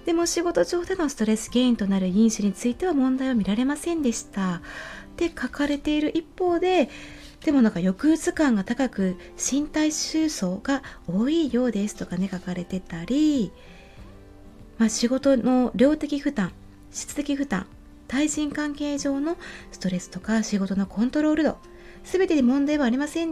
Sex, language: female, Japanese